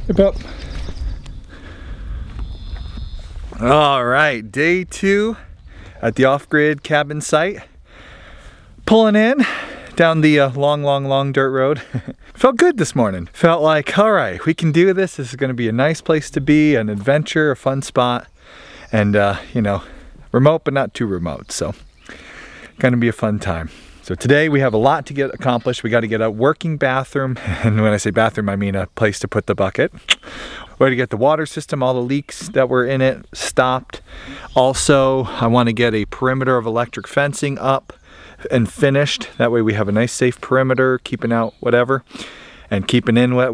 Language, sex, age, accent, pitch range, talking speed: English, male, 30-49, American, 110-150 Hz, 185 wpm